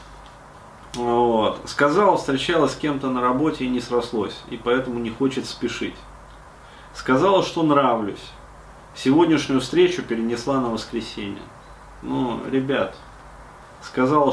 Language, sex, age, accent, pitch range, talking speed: Russian, male, 30-49, native, 110-135 Hz, 110 wpm